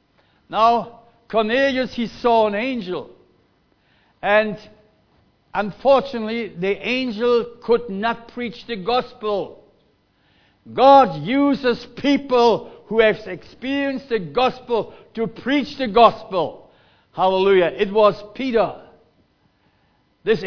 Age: 60-79